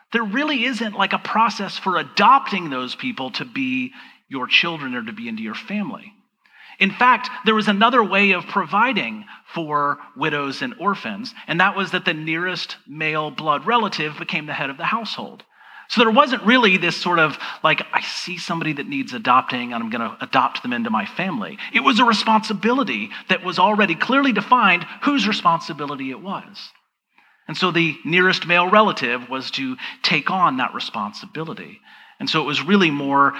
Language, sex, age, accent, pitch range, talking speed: English, male, 40-59, American, 165-235 Hz, 180 wpm